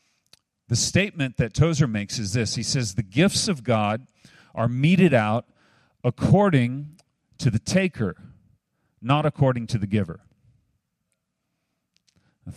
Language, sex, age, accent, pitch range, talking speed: English, male, 40-59, American, 110-140 Hz, 125 wpm